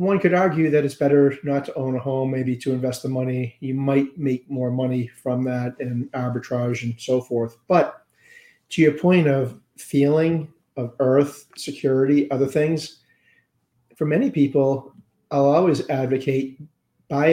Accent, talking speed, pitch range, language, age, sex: American, 160 wpm, 130-155 Hz, English, 40-59, male